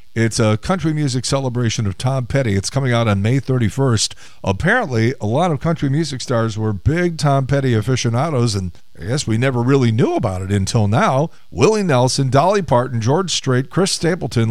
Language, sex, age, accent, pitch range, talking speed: English, male, 50-69, American, 110-145 Hz, 185 wpm